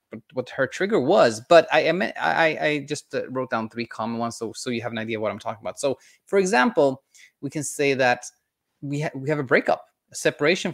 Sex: male